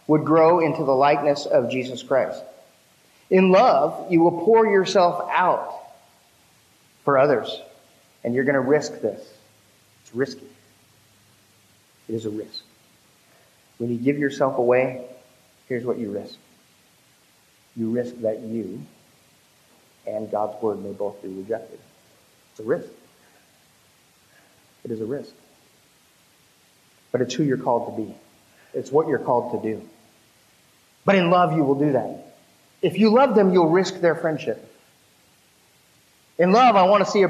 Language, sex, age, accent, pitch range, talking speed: English, male, 40-59, American, 120-170 Hz, 145 wpm